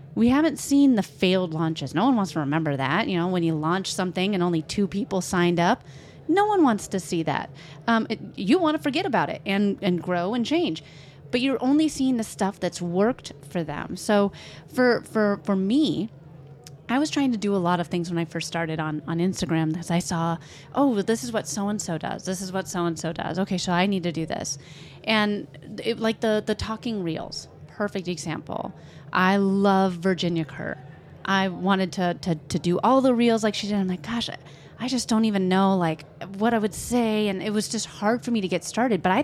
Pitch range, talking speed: 170-225 Hz, 225 wpm